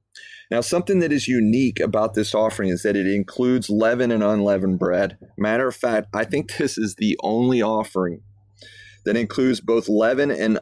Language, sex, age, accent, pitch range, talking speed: English, male, 30-49, American, 105-125 Hz, 175 wpm